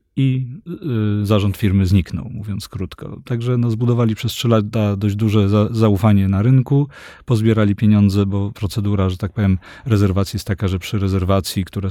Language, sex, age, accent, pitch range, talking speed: Polish, male, 40-59, native, 100-120 Hz, 165 wpm